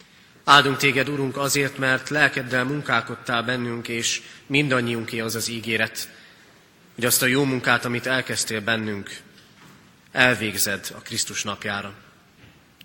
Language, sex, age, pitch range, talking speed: Hungarian, male, 30-49, 115-135 Hz, 115 wpm